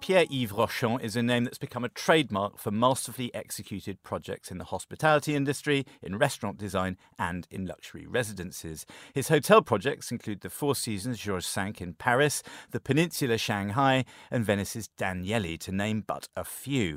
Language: English